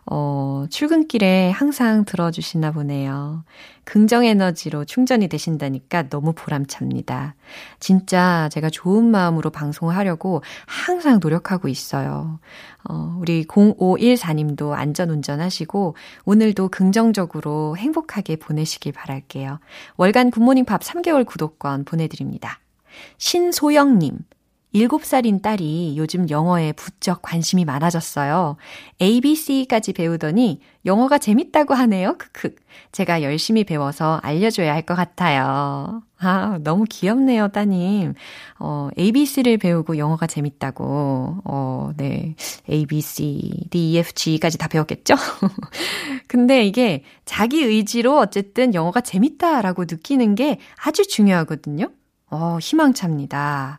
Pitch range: 155-225 Hz